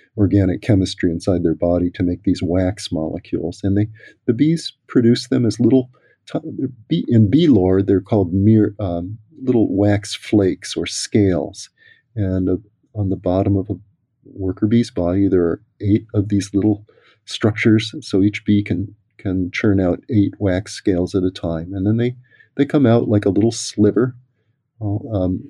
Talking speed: 160 wpm